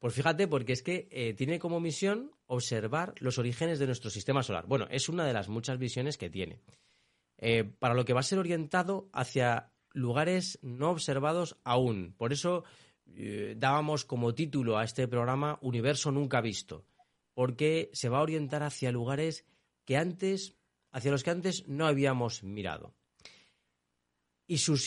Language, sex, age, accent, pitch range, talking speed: Spanish, male, 30-49, Spanish, 110-150 Hz, 165 wpm